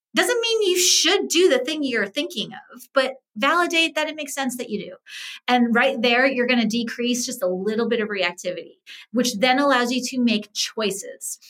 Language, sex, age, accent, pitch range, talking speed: English, female, 30-49, American, 205-270 Hz, 205 wpm